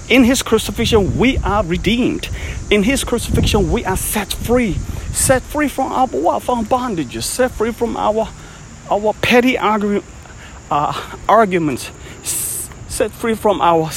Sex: male